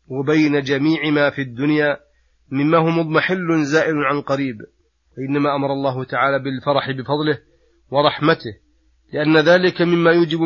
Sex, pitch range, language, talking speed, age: male, 140-155 Hz, Arabic, 125 wpm, 40-59